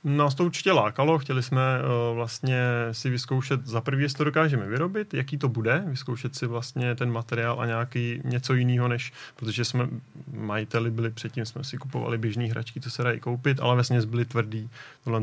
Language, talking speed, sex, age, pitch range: Czech, 195 wpm, male, 30-49, 115-130 Hz